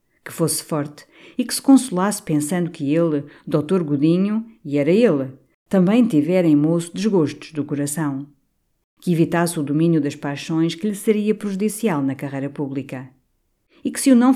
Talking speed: 165 wpm